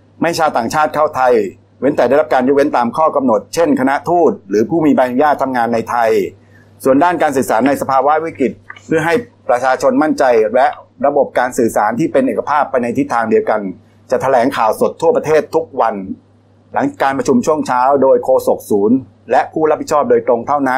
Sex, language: male, Thai